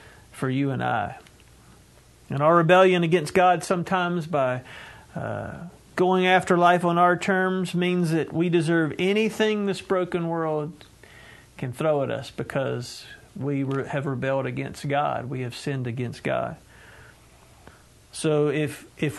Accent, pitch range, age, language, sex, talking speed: American, 145-175 Hz, 50-69, English, male, 140 wpm